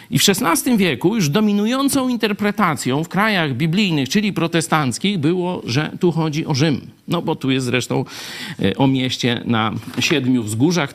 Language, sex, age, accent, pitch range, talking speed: Polish, male, 50-69, native, 130-195 Hz, 155 wpm